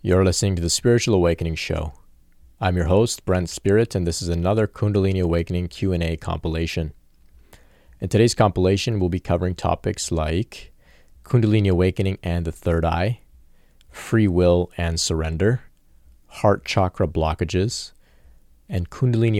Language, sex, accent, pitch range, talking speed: English, male, American, 80-95 Hz, 135 wpm